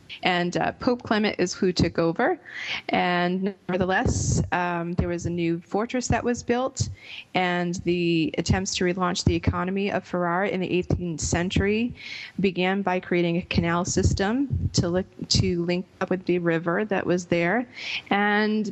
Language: English